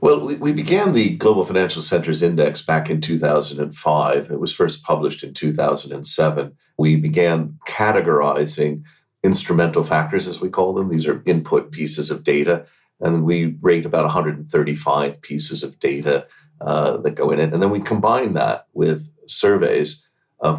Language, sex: English, male